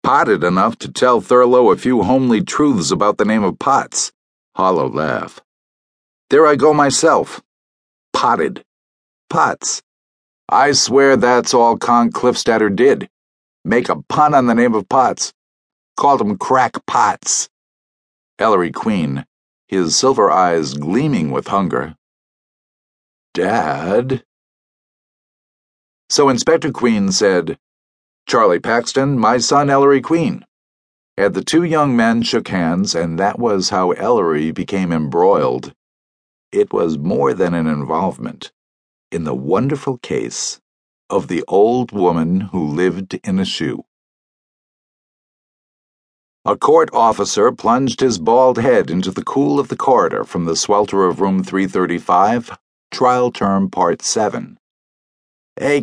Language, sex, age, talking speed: English, male, 50-69, 125 wpm